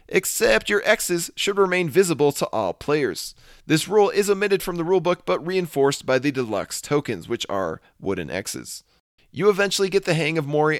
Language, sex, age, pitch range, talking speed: English, male, 30-49, 145-190 Hz, 185 wpm